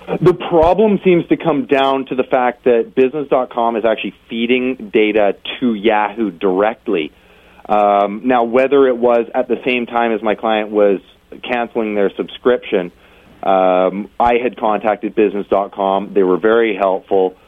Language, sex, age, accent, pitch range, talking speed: English, male, 40-59, American, 90-115 Hz, 150 wpm